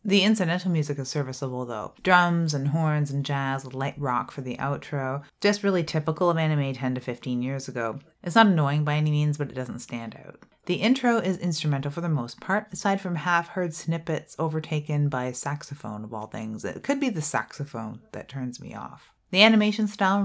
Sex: female